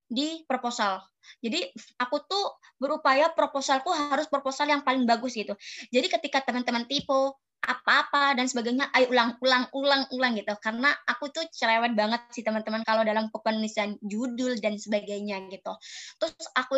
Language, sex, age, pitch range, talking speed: Indonesian, male, 20-39, 235-295 Hz, 145 wpm